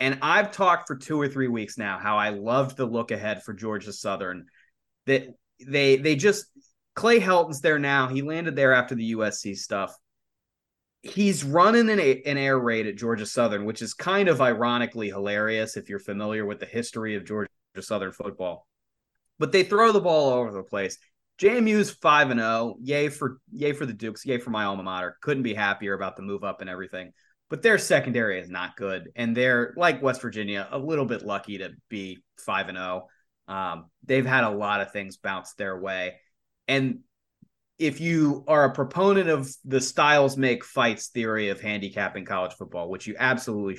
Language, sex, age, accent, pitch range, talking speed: English, male, 30-49, American, 105-145 Hz, 190 wpm